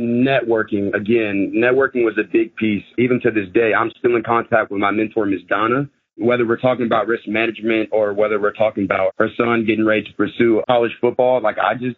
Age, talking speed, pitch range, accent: 30-49, 210 wpm, 105-120 Hz, American